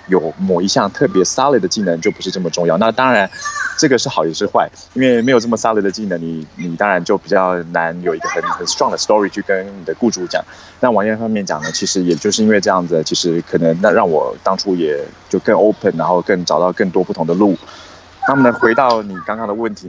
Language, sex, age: Chinese, male, 20-39